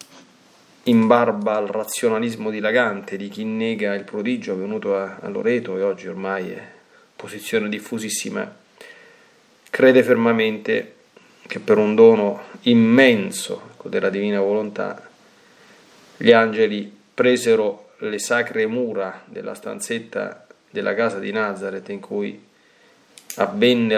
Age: 30-49